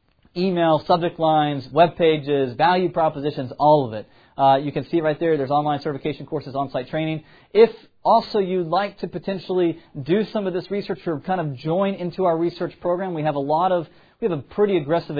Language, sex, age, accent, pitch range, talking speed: English, male, 30-49, American, 145-170 Hz, 200 wpm